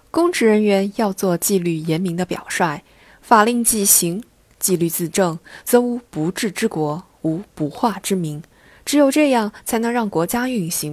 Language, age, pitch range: Chinese, 20-39, 170-245 Hz